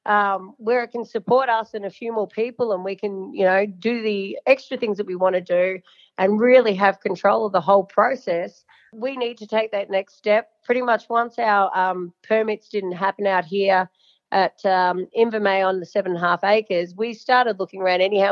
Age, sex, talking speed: 40-59, female, 215 wpm